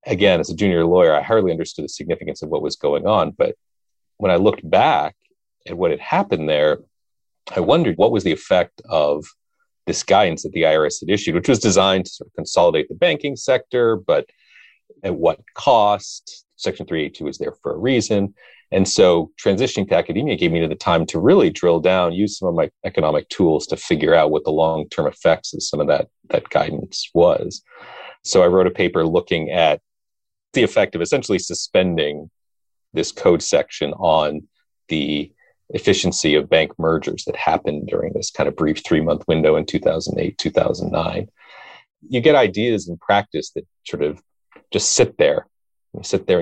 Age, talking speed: 40-59, 185 wpm